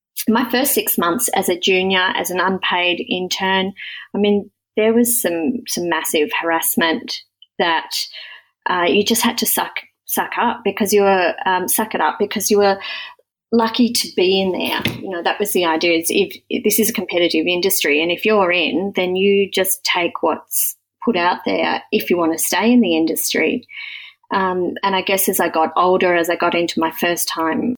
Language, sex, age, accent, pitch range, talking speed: English, female, 30-49, Australian, 170-215 Hz, 200 wpm